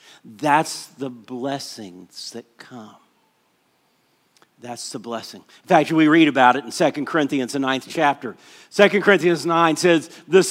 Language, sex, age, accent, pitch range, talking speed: English, male, 50-69, American, 140-190 Hz, 145 wpm